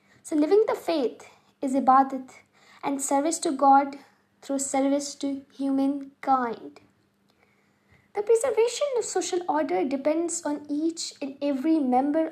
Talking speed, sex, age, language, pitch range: 120 wpm, female, 20-39, Urdu, 275-355 Hz